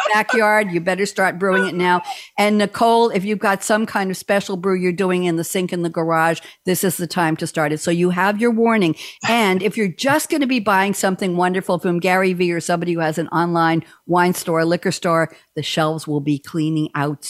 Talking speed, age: 230 wpm, 60-79